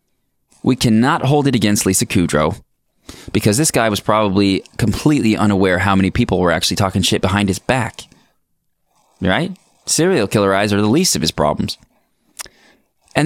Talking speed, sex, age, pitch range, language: 160 wpm, male, 20-39, 95-125 Hz, English